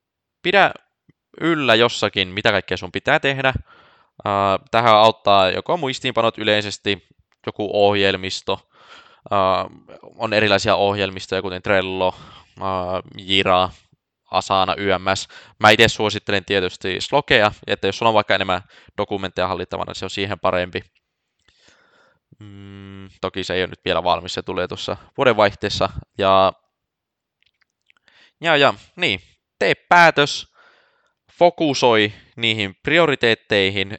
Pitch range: 95-125 Hz